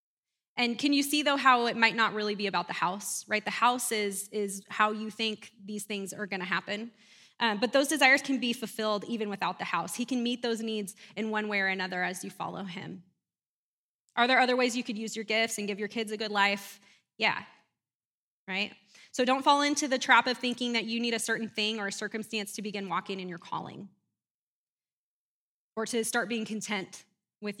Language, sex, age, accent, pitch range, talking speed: English, female, 20-39, American, 200-235 Hz, 215 wpm